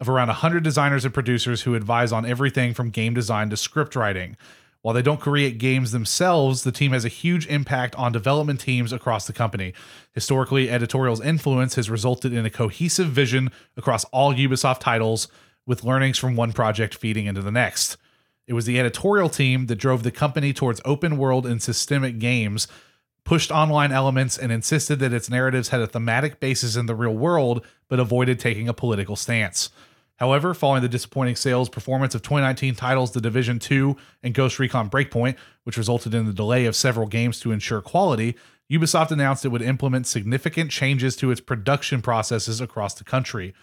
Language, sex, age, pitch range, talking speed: English, male, 30-49, 120-140 Hz, 185 wpm